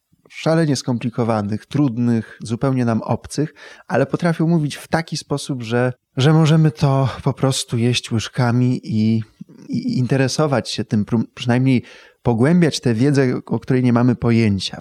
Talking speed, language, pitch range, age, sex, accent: 140 wpm, Polish, 115-150 Hz, 20-39, male, native